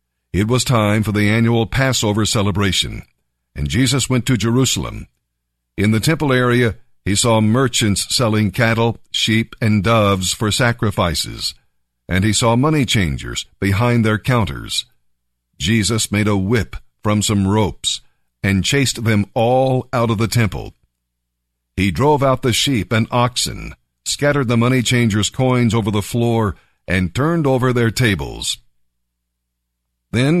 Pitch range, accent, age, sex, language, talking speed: 80-125 Hz, American, 50-69, male, English, 140 wpm